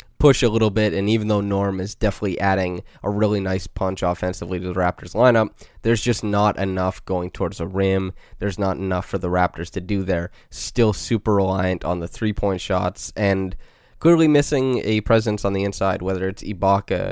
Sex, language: male, English